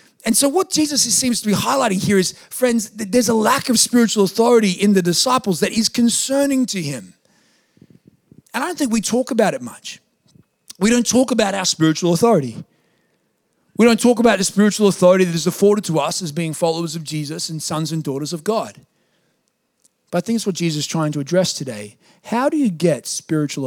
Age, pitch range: 30-49, 155-220 Hz